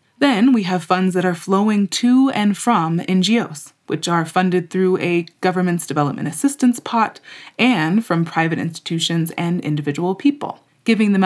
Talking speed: 155 wpm